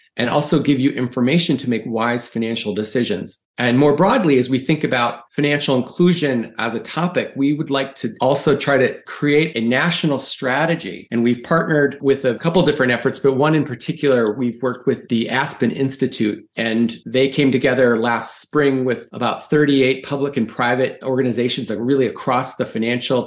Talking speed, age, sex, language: 180 wpm, 40-59, male, English